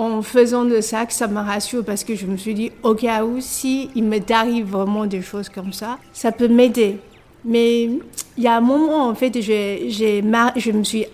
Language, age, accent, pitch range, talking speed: French, 50-69, French, 210-240 Hz, 220 wpm